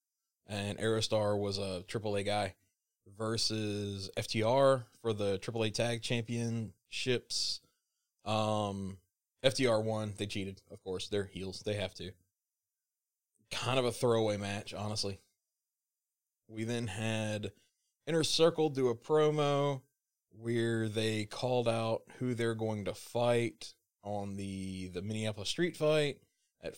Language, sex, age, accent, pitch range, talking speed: English, male, 20-39, American, 100-120 Hz, 125 wpm